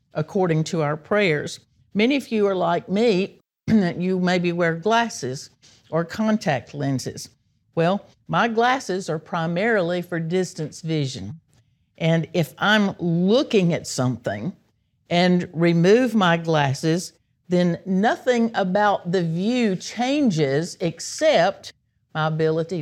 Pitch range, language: 155-195 Hz, English